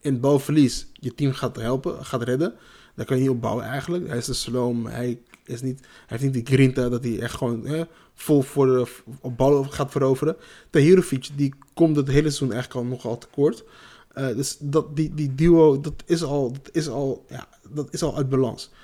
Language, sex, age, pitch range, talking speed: Dutch, male, 20-39, 135-165 Hz, 205 wpm